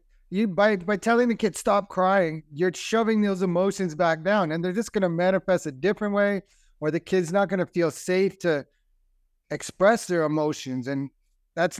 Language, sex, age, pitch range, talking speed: English, male, 30-49, 165-205 Hz, 190 wpm